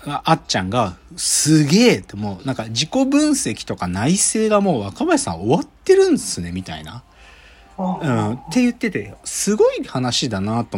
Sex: male